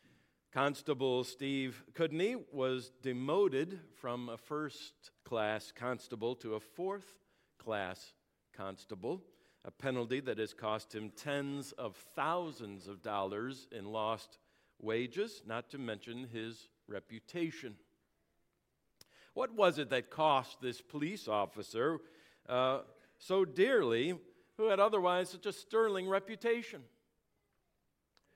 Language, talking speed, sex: English, 105 wpm, male